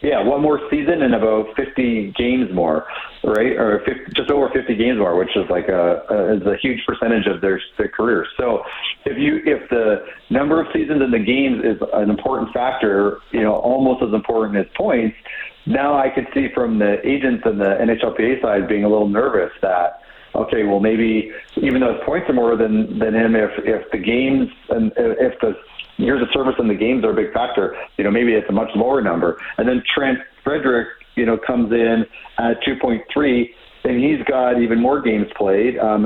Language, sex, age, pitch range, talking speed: English, male, 40-59, 105-135 Hz, 205 wpm